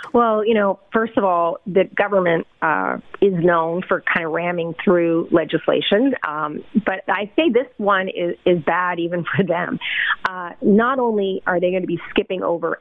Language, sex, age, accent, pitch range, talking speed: English, female, 40-59, American, 175-215 Hz, 185 wpm